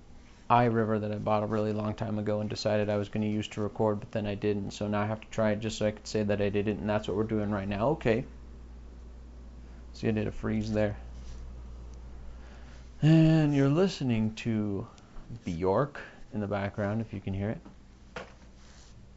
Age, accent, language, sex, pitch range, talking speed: 40-59, American, English, male, 100-115 Hz, 205 wpm